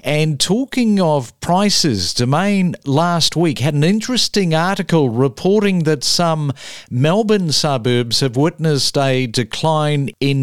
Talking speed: 120 wpm